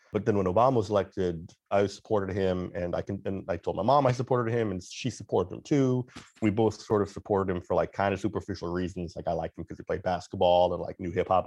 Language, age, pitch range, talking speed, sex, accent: English, 30-49, 90-110 Hz, 255 wpm, male, American